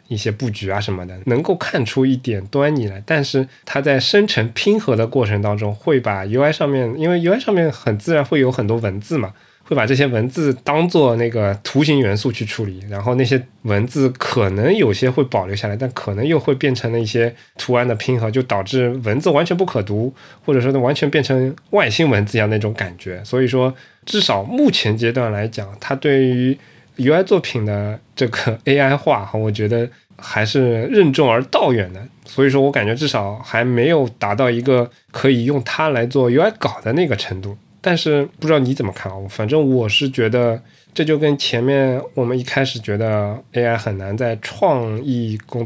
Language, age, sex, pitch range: Chinese, 20-39, male, 110-140 Hz